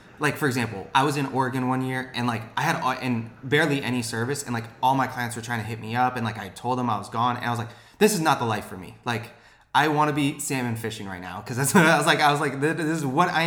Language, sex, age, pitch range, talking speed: English, male, 20-39, 110-130 Hz, 310 wpm